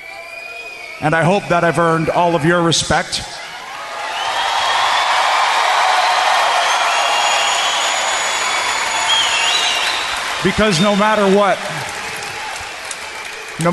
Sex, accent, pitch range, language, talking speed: male, American, 155-185 Hz, English, 65 wpm